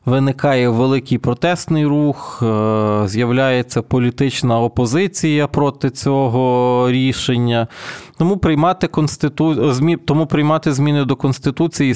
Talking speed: 95 wpm